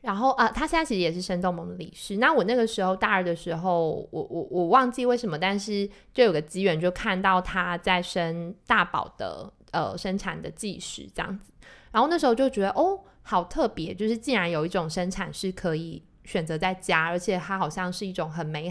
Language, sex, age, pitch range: Chinese, female, 20-39, 170-215 Hz